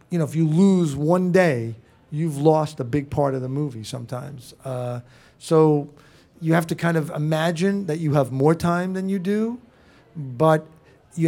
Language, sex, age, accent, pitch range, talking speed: English, male, 40-59, American, 135-165 Hz, 180 wpm